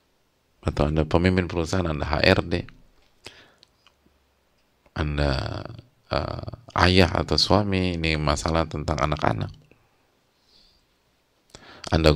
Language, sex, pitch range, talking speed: English, male, 80-110 Hz, 80 wpm